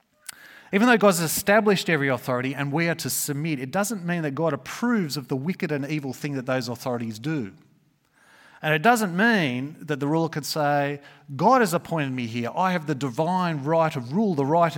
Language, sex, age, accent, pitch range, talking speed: English, male, 30-49, Australian, 130-180 Hz, 205 wpm